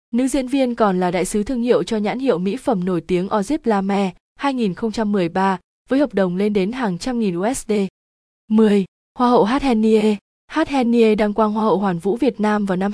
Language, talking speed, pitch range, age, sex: Vietnamese, 200 wpm, 195-235 Hz, 20-39, female